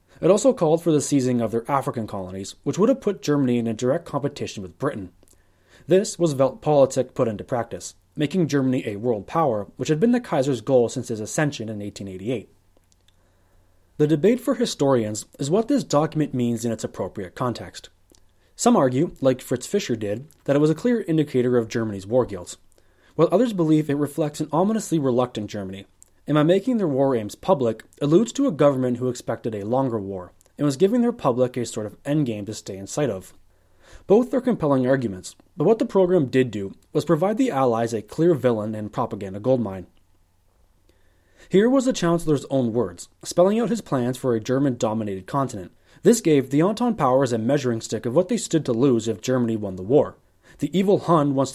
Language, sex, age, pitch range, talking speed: English, male, 20-39, 105-160 Hz, 195 wpm